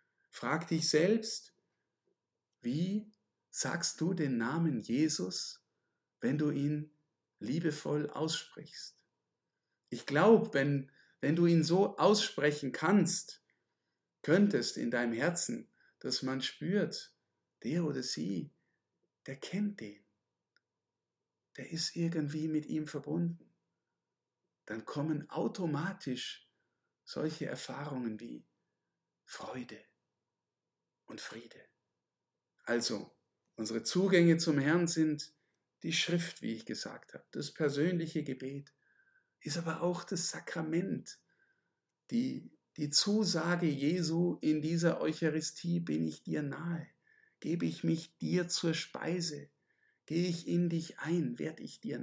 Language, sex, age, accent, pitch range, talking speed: German, male, 50-69, German, 150-175 Hz, 110 wpm